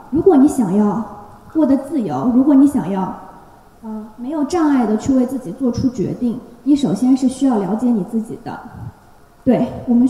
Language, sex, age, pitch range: Chinese, female, 20-39, 220-285 Hz